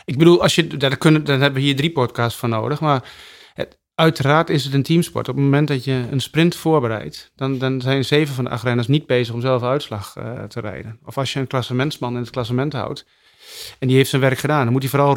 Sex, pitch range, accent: male, 120-140 Hz, Dutch